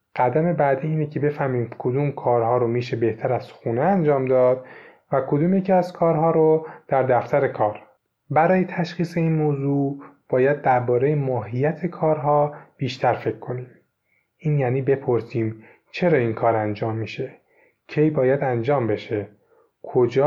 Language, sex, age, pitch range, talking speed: Persian, male, 30-49, 130-165 Hz, 140 wpm